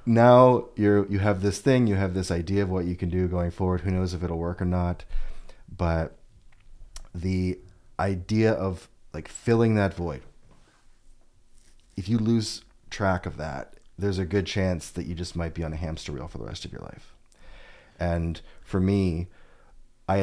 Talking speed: 180 wpm